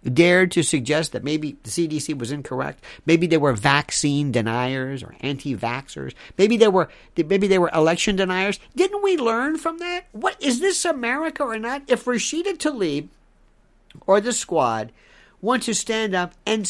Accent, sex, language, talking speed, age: American, male, English, 165 wpm, 50-69